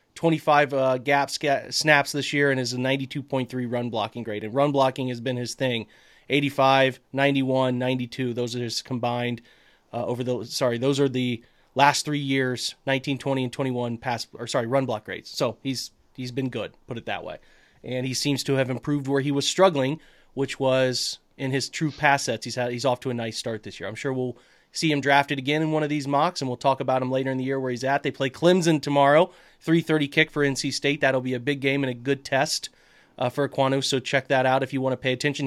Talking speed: 235 wpm